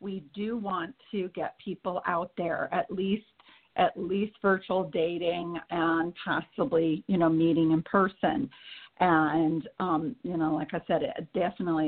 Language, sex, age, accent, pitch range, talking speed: English, female, 50-69, American, 165-200 Hz, 145 wpm